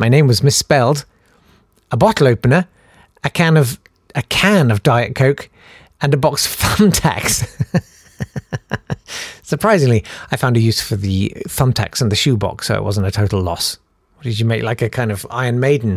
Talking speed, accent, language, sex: 175 wpm, British, English, male